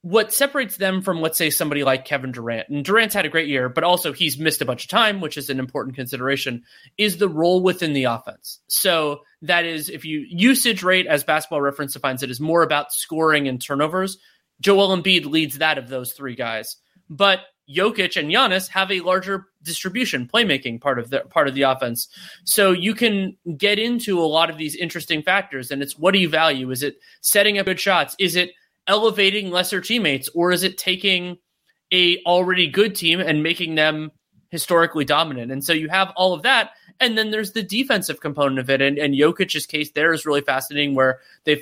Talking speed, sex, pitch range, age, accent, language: 205 wpm, male, 145-190 Hz, 30-49, American, English